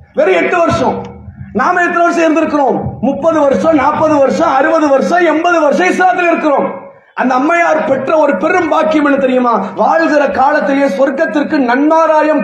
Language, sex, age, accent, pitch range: English, male, 30-49, Indian, 255-310 Hz